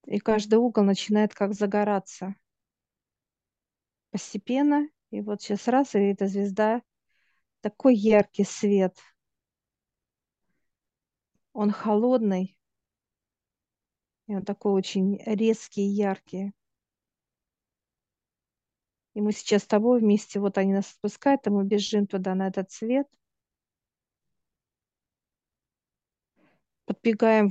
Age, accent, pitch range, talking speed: 40-59, native, 200-220 Hz, 95 wpm